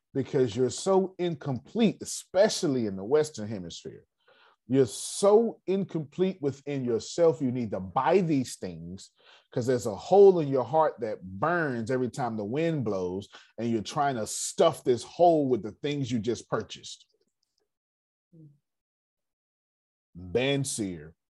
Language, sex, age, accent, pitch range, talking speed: English, male, 30-49, American, 110-170 Hz, 135 wpm